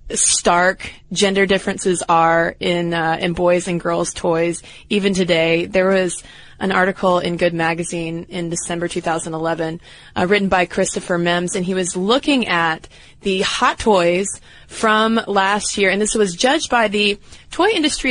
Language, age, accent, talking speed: English, 20-39, American, 155 wpm